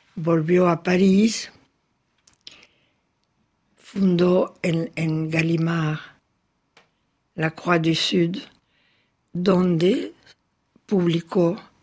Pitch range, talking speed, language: 155-195 Hz, 65 wpm, Spanish